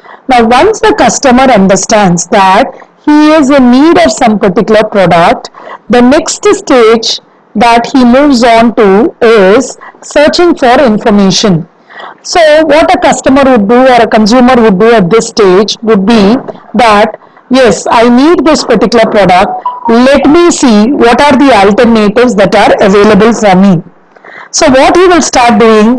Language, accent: English, Indian